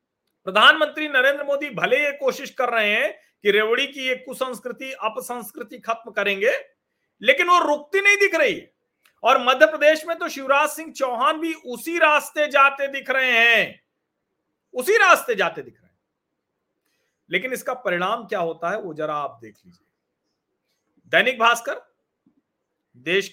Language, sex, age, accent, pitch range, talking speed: Hindi, male, 40-59, native, 175-265 Hz, 150 wpm